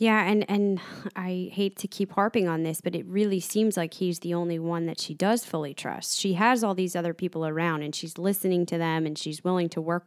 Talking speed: 245 wpm